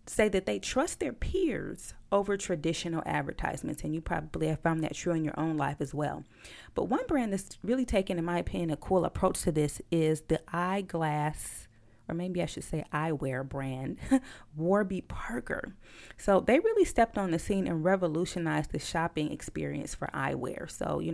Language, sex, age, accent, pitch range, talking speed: English, female, 30-49, American, 160-215 Hz, 180 wpm